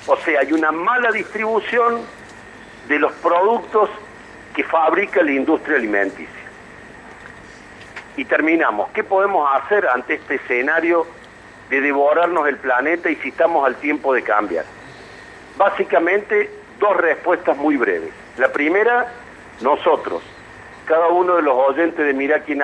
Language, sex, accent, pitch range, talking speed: Spanish, male, Argentinian, 140-210 Hz, 130 wpm